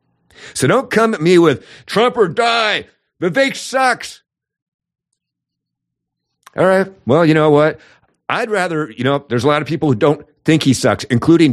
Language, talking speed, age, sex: English, 165 wpm, 50-69, male